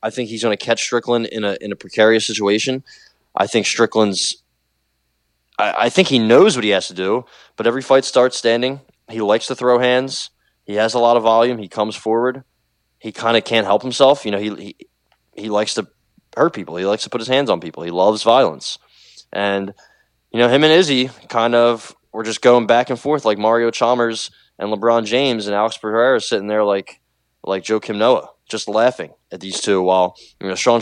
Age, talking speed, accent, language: 20-39, 210 wpm, American, English